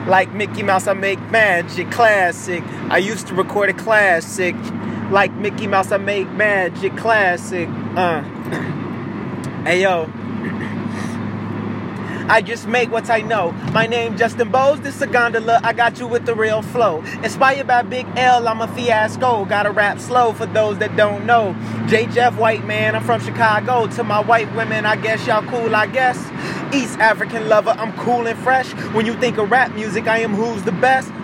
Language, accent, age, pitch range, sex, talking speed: English, American, 20-39, 205-235 Hz, male, 180 wpm